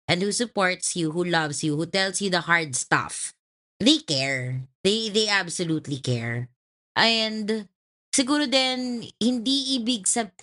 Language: English